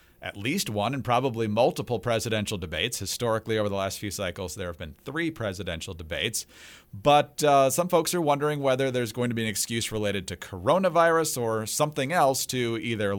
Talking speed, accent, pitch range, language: 185 wpm, American, 105-140 Hz, English